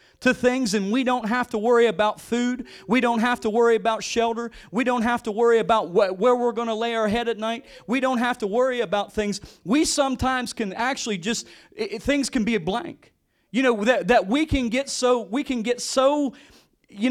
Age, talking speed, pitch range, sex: 40-59, 215 wpm, 210-255 Hz, male